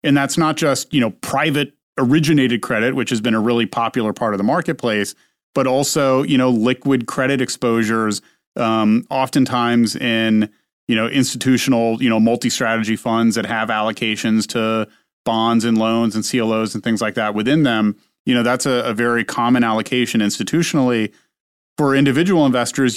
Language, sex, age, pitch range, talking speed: English, male, 30-49, 115-130 Hz, 165 wpm